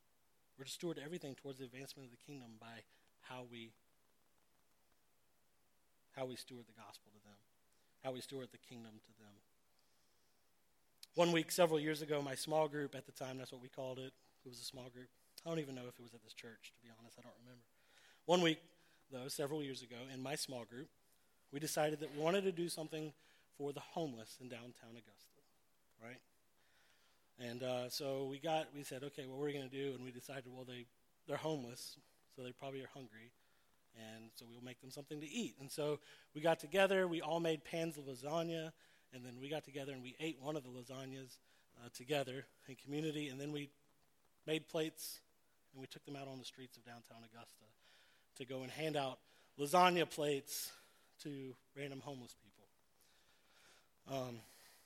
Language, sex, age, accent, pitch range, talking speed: English, male, 40-59, American, 125-155 Hz, 195 wpm